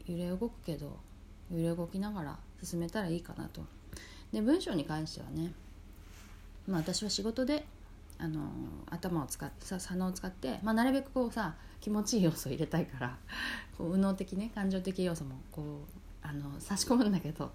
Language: Japanese